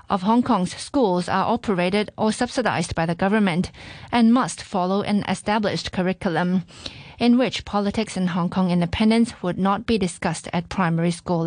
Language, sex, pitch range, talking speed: English, female, 185-230 Hz, 160 wpm